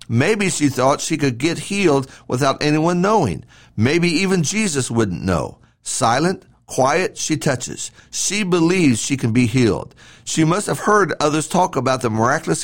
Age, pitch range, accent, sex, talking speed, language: 50-69, 120-175 Hz, American, male, 160 wpm, English